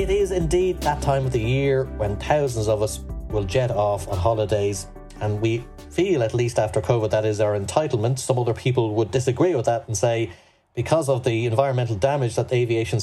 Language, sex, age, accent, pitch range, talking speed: English, male, 30-49, Irish, 105-130 Hz, 205 wpm